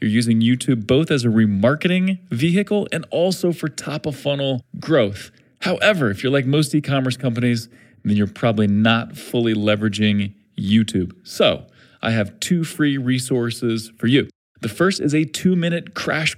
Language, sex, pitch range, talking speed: English, male, 110-150 Hz, 160 wpm